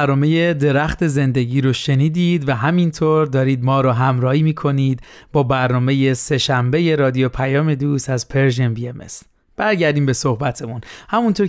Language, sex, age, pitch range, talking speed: Persian, male, 30-49, 130-160 Hz, 135 wpm